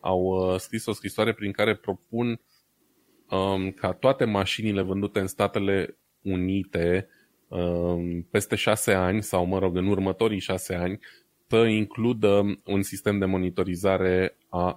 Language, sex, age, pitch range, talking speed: Romanian, male, 20-39, 95-110 Hz, 125 wpm